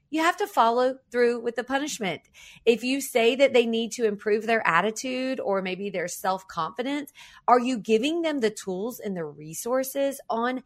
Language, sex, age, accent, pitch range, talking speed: English, female, 40-59, American, 210-265 Hz, 180 wpm